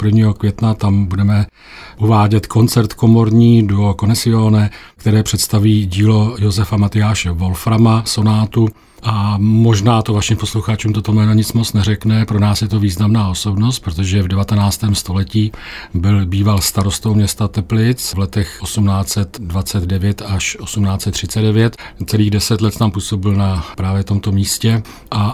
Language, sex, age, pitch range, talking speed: Czech, male, 40-59, 100-115 Hz, 135 wpm